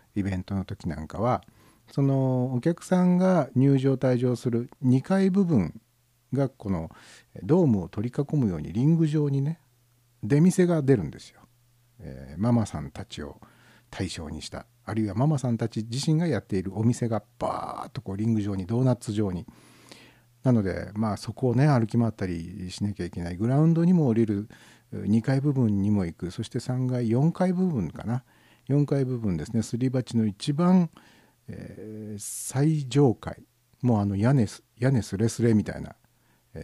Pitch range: 100-130 Hz